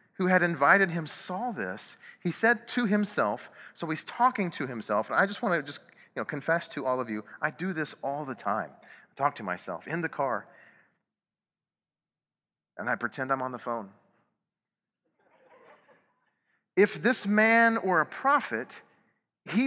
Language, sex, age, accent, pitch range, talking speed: English, male, 30-49, American, 130-205 Hz, 170 wpm